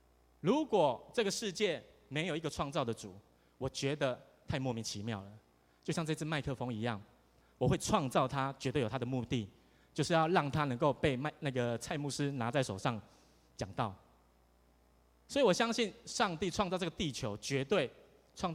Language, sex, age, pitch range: Chinese, male, 20-39, 110-160 Hz